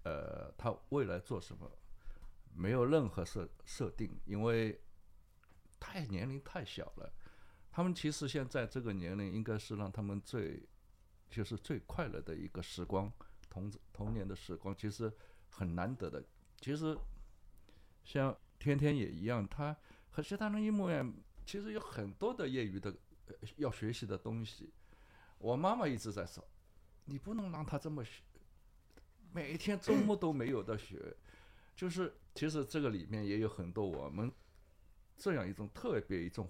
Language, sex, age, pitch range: Chinese, male, 60-79, 95-140 Hz